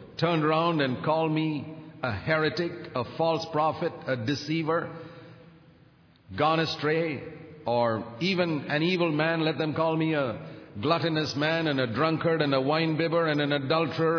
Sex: male